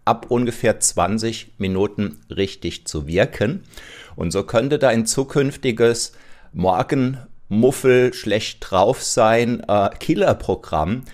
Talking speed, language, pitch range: 95 wpm, German, 90-115 Hz